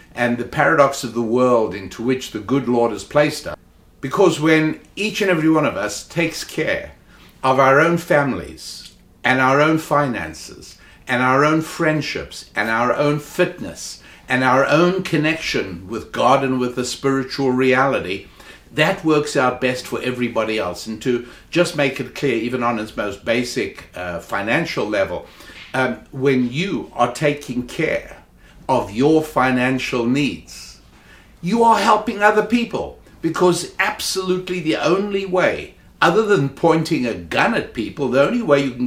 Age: 60-79